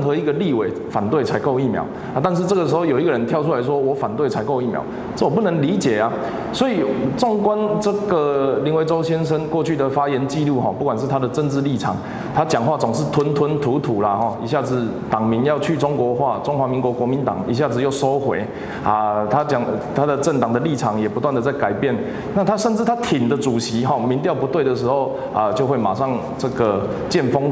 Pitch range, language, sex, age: 130-165 Hz, Chinese, male, 20-39